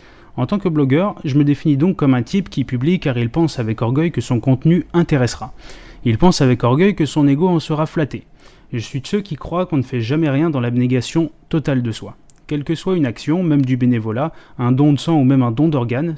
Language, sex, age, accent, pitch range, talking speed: French, male, 20-39, French, 125-160 Hz, 240 wpm